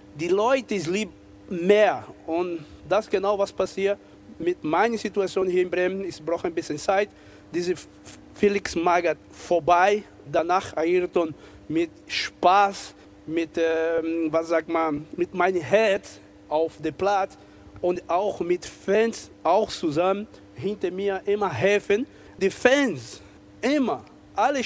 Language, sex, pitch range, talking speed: German, male, 160-210 Hz, 130 wpm